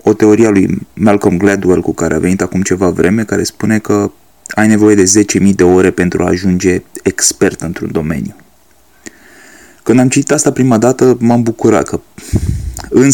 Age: 20-39